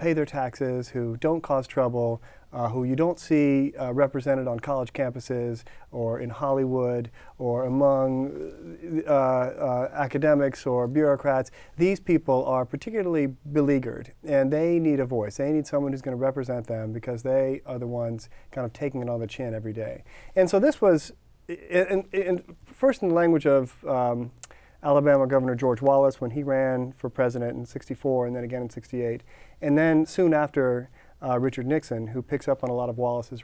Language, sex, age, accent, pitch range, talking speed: English, male, 40-59, American, 125-160 Hz, 180 wpm